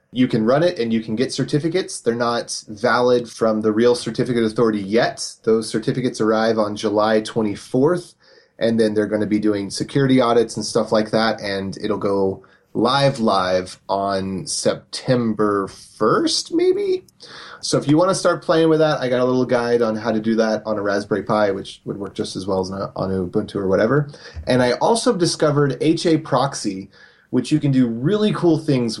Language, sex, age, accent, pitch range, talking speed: English, male, 30-49, American, 100-125 Hz, 190 wpm